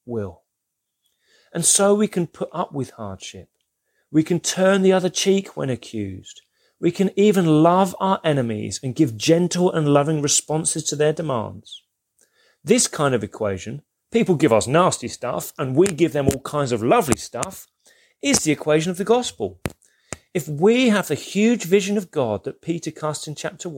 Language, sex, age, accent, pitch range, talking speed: English, male, 30-49, British, 140-205 Hz, 175 wpm